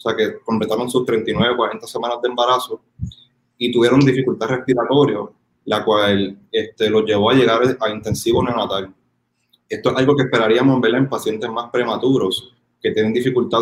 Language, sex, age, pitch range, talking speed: Spanish, male, 20-39, 110-130 Hz, 160 wpm